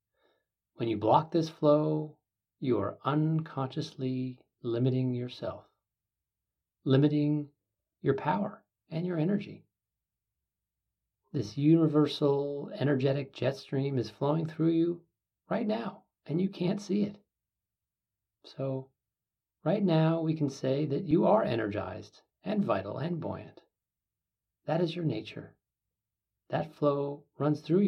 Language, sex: English, male